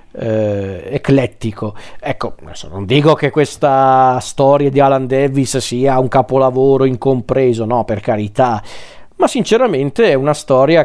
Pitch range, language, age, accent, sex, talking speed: 130-155 Hz, Italian, 40-59, native, male, 125 wpm